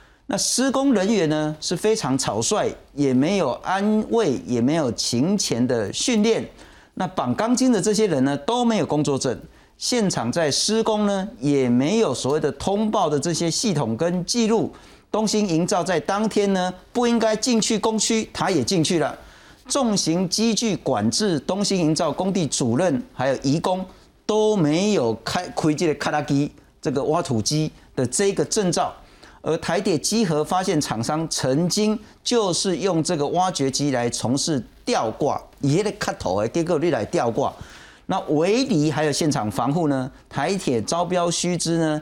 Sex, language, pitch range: male, Chinese, 140-210 Hz